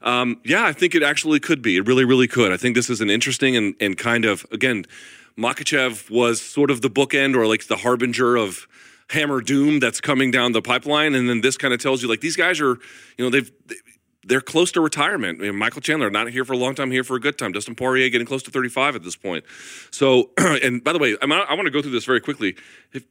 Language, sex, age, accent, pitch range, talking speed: English, male, 30-49, American, 110-130 Hz, 245 wpm